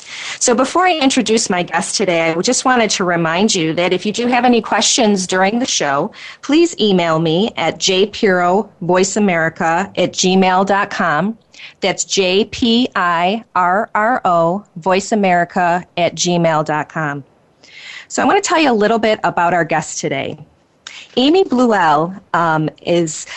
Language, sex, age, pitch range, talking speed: English, female, 30-49, 170-215 Hz, 130 wpm